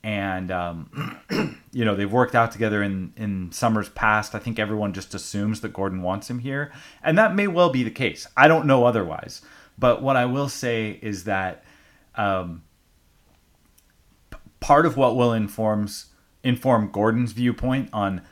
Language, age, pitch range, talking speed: English, 30-49, 100-120 Hz, 165 wpm